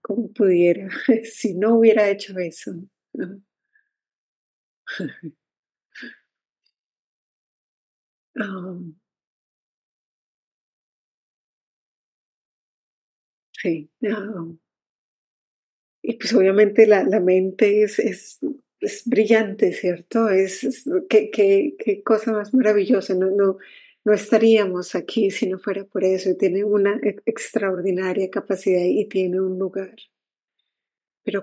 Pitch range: 185-225 Hz